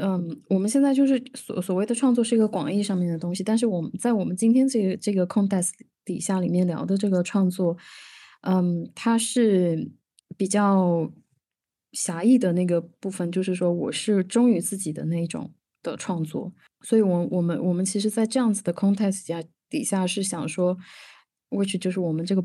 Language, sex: Chinese, female